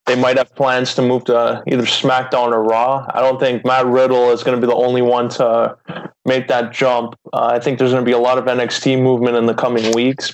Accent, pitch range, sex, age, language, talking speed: American, 125-140 Hz, male, 20-39, English, 250 wpm